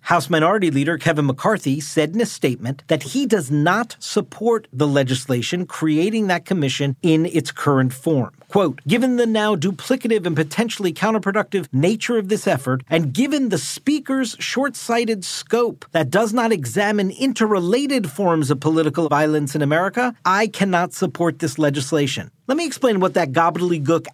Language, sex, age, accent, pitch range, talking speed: English, male, 40-59, American, 150-220 Hz, 155 wpm